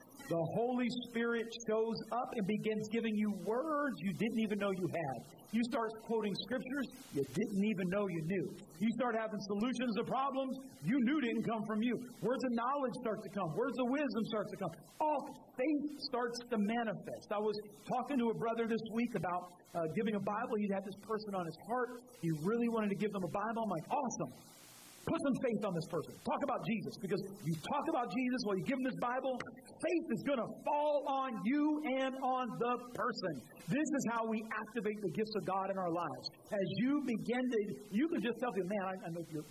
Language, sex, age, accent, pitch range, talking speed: English, male, 40-59, American, 190-240 Hz, 215 wpm